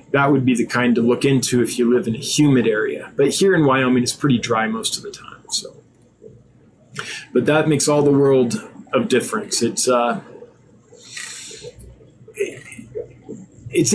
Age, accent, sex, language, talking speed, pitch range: 20-39, American, male, English, 165 wpm, 120-160 Hz